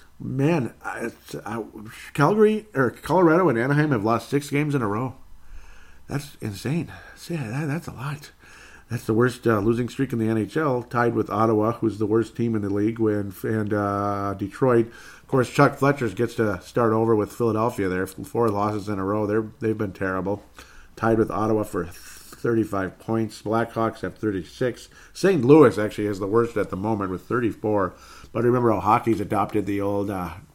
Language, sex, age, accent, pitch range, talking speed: English, male, 50-69, American, 100-125 Hz, 185 wpm